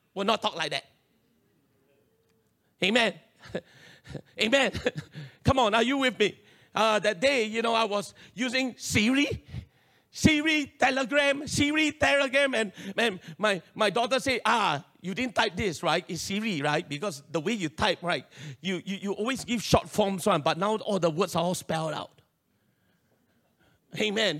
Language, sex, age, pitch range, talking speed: English, male, 40-59, 160-230 Hz, 160 wpm